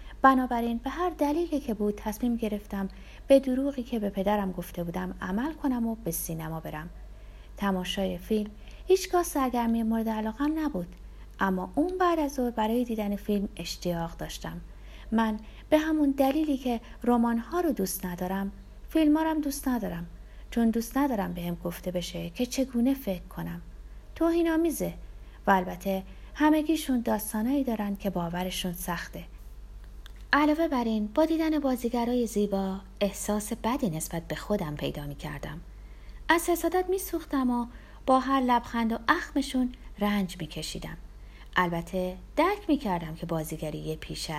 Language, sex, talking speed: Persian, female, 140 wpm